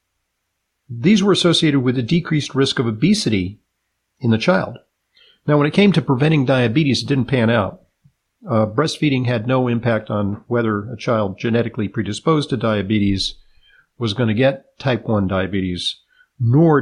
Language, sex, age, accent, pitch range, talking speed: English, male, 50-69, American, 110-150 Hz, 155 wpm